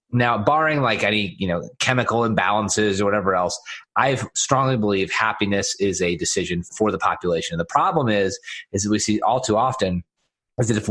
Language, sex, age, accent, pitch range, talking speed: English, male, 30-49, American, 105-135 Hz, 195 wpm